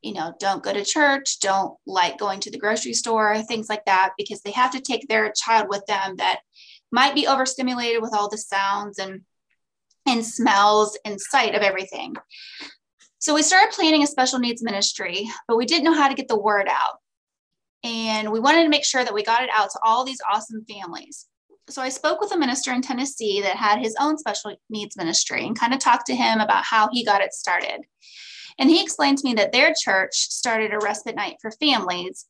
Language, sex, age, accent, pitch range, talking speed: English, female, 20-39, American, 210-260 Hz, 215 wpm